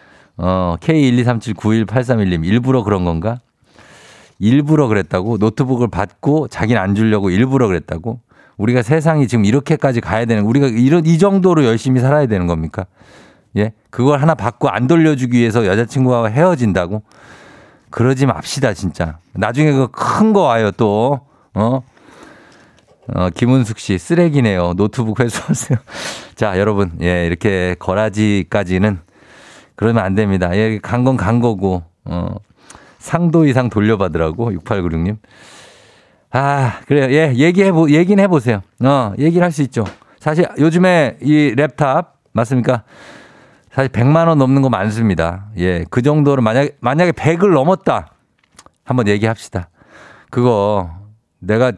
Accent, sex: native, male